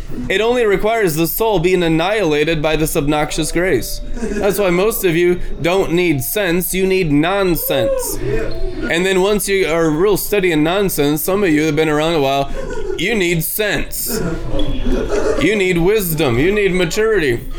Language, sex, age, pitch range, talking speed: English, male, 20-39, 160-210 Hz, 165 wpm